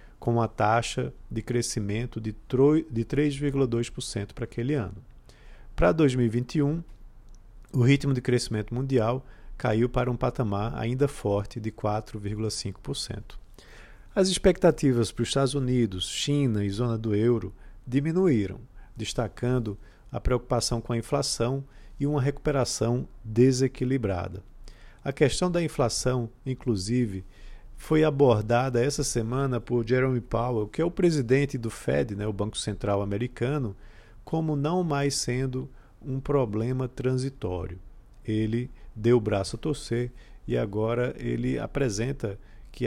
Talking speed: 125 wpm